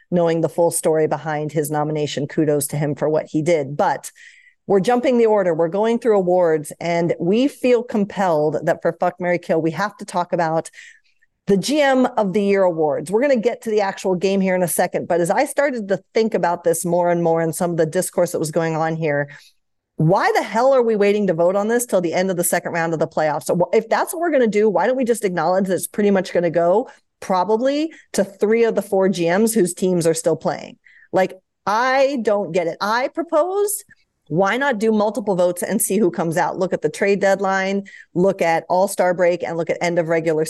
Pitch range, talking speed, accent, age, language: 170-225 Hz, 240 wpm, American, 40-59, English